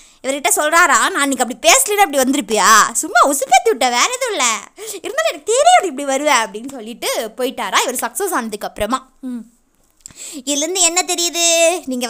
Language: Tamil